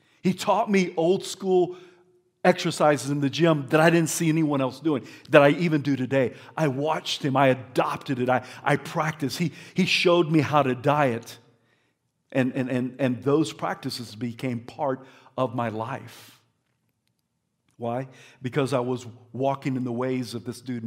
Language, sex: English, male